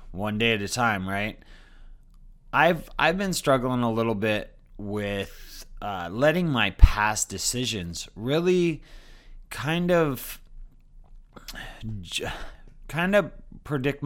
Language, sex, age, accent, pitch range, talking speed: English, male, 30-49, American, 105-135 Hz, 105 wpm